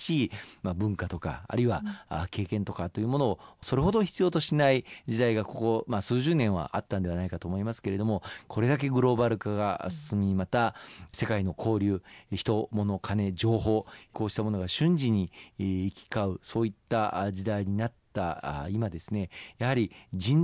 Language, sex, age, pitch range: Japanese, male, 40-59, 95-130 Hz